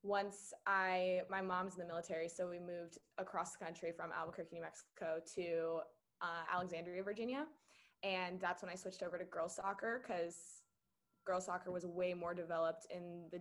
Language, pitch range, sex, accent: English, 175-200 Hz, female, American